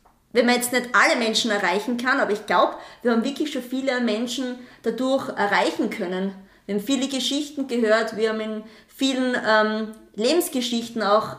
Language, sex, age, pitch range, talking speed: German, female, 20-39, 215-265 Hz, 170 wpm